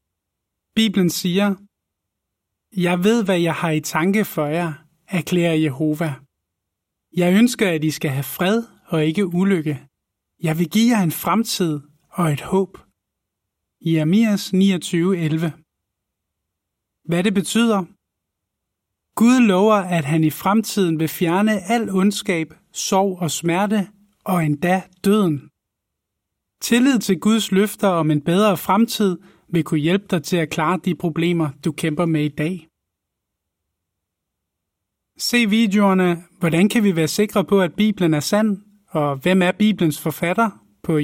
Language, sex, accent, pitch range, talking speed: Danish, male, native, 150-195 Hz, 135 wpm